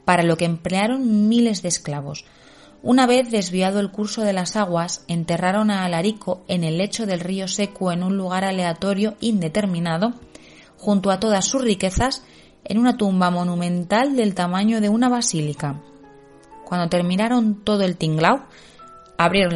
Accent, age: Spanish, 20-39